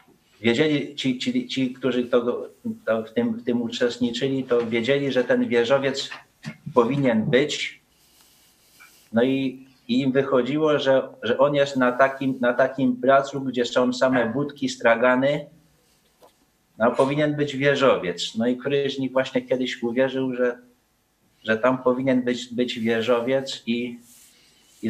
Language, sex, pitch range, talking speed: Polish, male, 120-135 Hz, 140 wpm